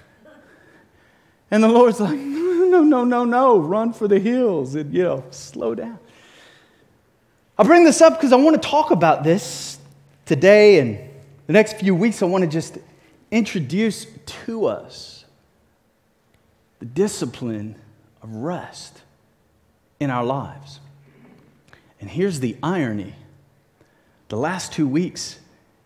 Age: 30-49